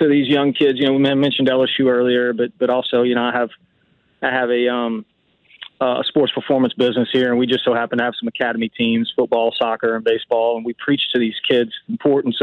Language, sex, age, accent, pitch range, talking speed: English, male, 30-49, American, 125-160 Hz, 235 wpm